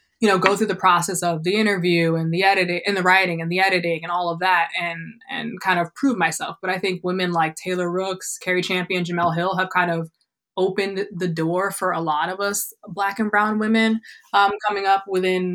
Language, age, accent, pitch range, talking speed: English, 20-39, American, 175-205 Hz, 225 wpm